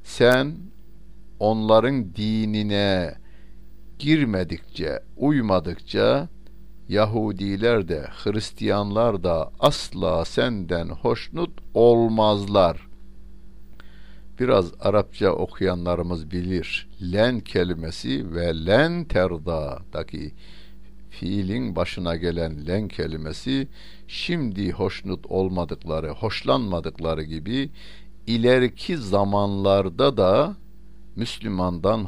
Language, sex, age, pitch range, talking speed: Turkish, male, 60-79, 85-125 Hz, 65 wpm